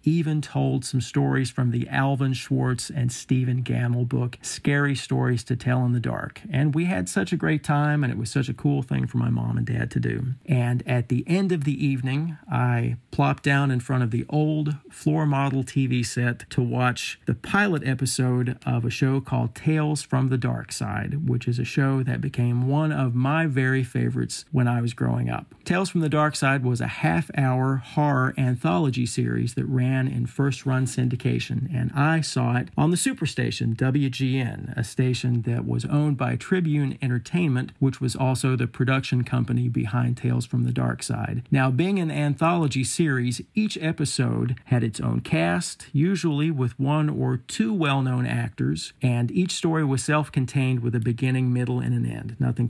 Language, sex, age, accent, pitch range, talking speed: English, male, 40-59, American, 125-145 Hz, 185 wpm